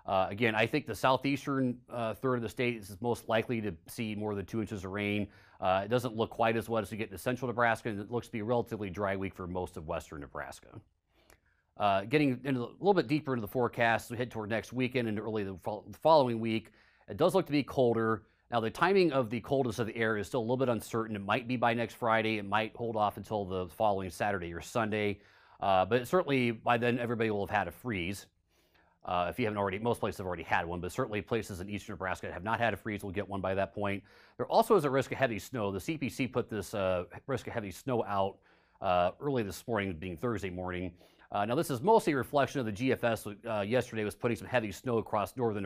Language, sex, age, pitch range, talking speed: English, male, 30-49, 100-120 Hz, 255 wpm